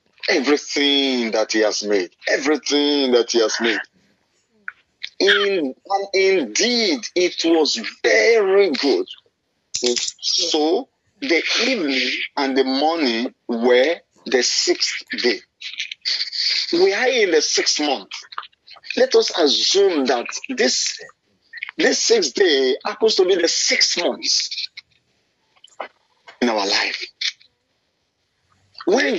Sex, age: male, 50-69